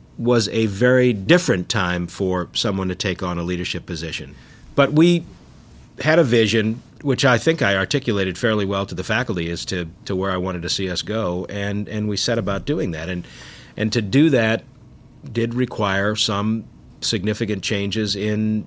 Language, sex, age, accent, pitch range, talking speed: English, male, 50-69, American, 95-125 Hz, 180 wpm